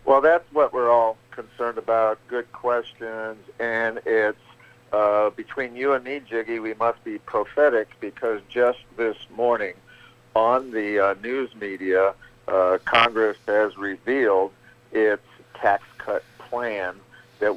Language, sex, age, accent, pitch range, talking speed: English, male, 50-69, American, 100-120 Hz, 135 wpm